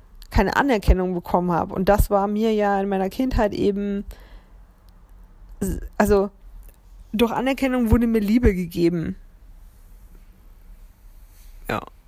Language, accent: German, German